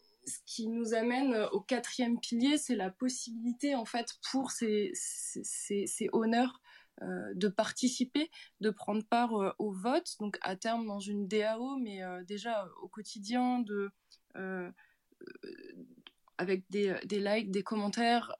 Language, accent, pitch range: English, French, 195-235 Hz